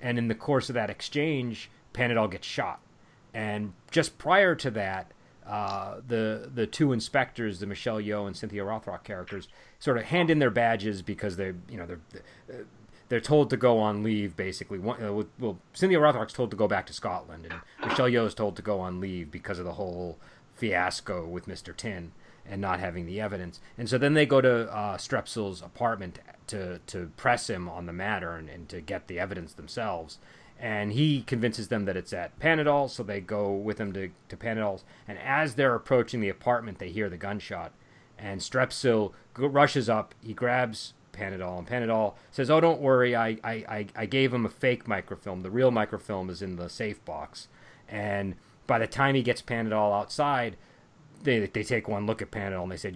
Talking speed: 195 wpm